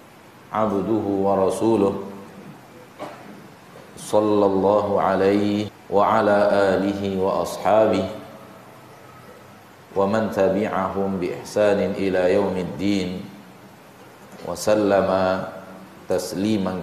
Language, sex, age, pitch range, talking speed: Indonesian, male, 50-69, 100-110 Hz, 70 wpm